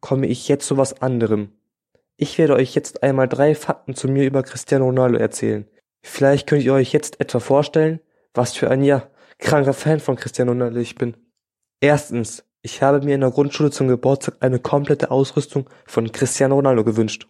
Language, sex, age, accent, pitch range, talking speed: German, male, 20-39, German, 120-140 Hz, 185 wpm